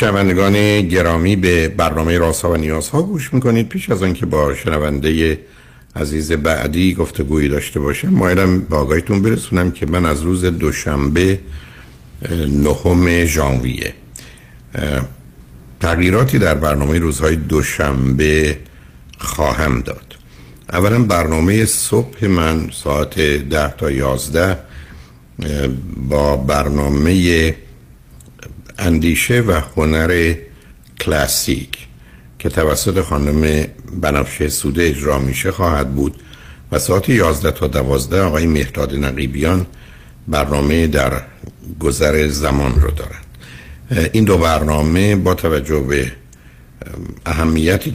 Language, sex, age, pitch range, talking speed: Persian, male, 60-79, 70-85 Hz, 105 wpm